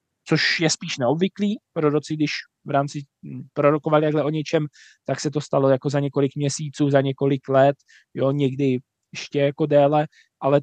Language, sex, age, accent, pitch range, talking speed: Czech, male, 20-39, native, 140-160 Hz, 150 wpm